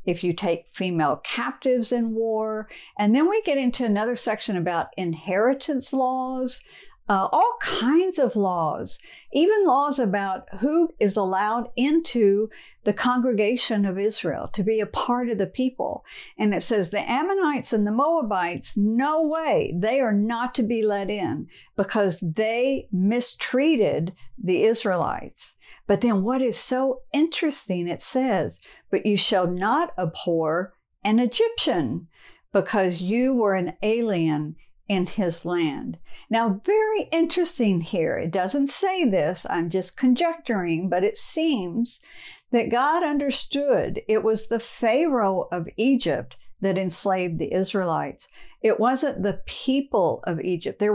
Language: English